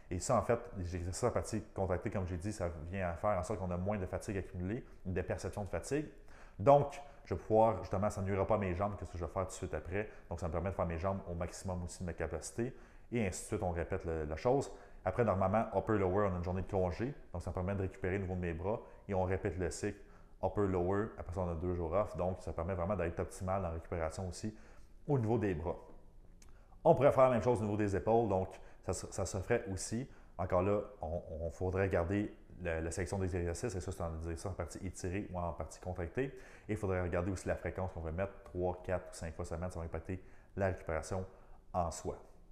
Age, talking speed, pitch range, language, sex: 30-49, 255 wpm, 90-110 Hz, French, male